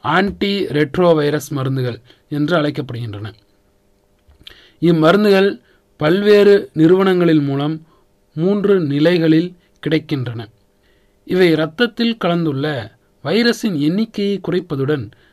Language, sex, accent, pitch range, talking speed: Tamil, male, native, 125-185 Hz, 70 wpm